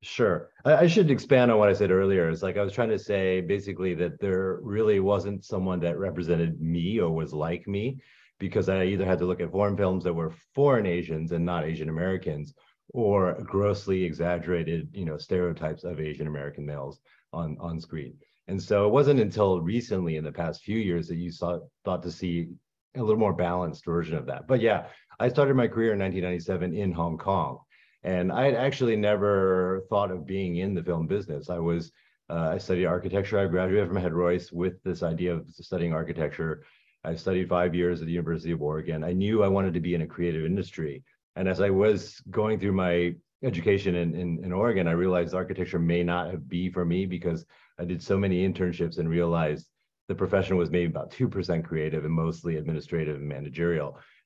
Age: 30-49